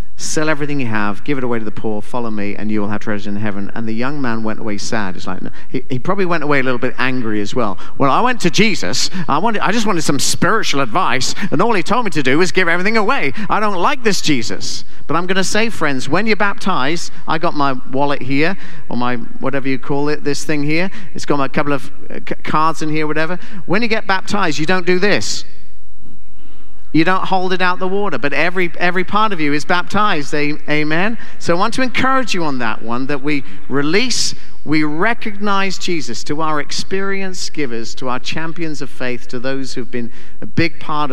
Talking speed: 225 wpm